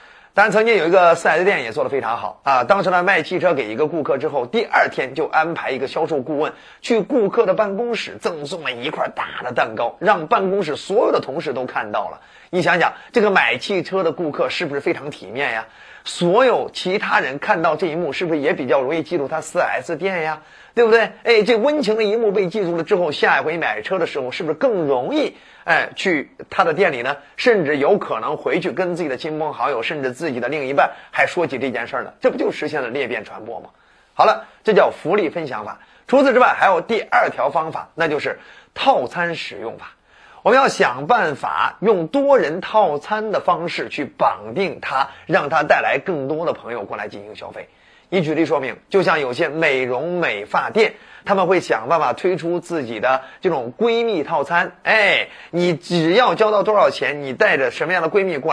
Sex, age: male, 30-49